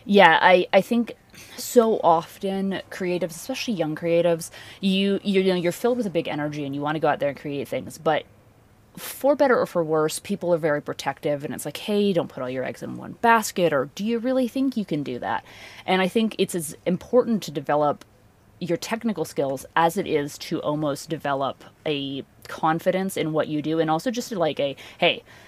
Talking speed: 205 wpm